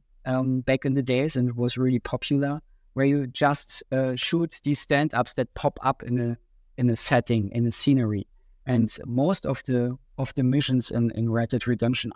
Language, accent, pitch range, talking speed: English, German, 120-140 Hz, 190 wpm